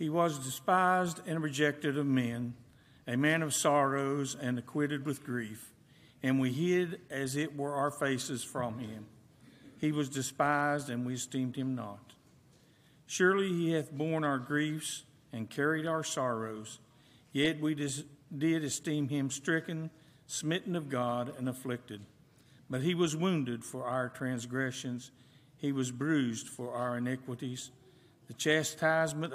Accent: American